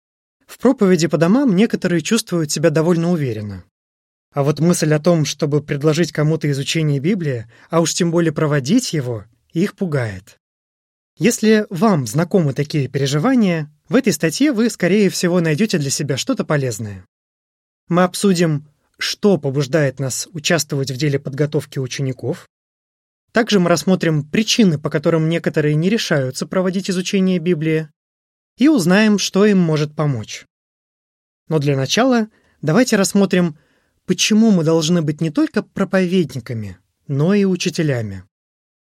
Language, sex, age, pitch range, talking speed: Russian, male, 20-39, 140-190 Hz, 130 wpm